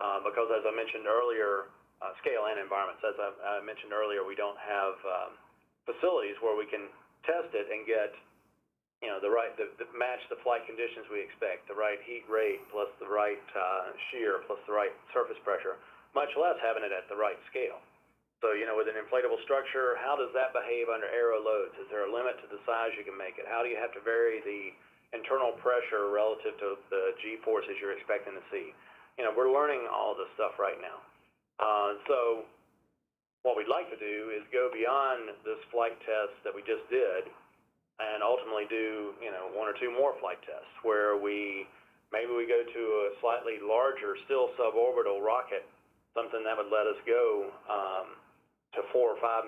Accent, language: American, English